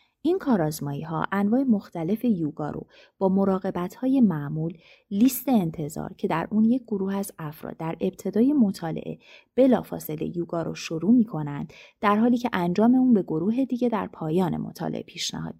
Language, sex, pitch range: Persian, female, 160-235 Hz